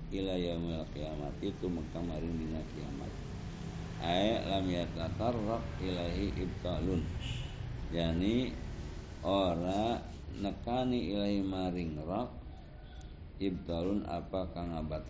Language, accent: Indonesian, native